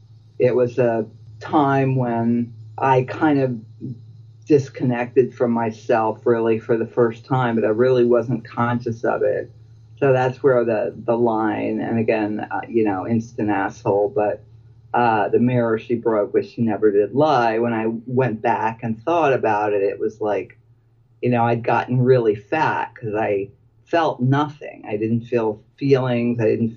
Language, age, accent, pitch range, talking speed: English, 50-69, American, 115-130 Hz, 165 wpm